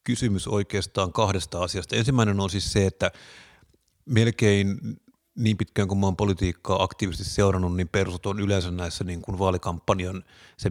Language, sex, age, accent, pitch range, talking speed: Finnish, male, 30-49, native, 90-105 Hz, 140 wpm